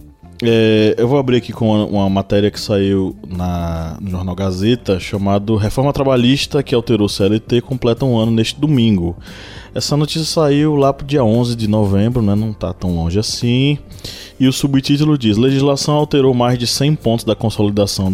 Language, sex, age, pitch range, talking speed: Portuguese, male, 20-39, 100-135 Hz, 175 wpm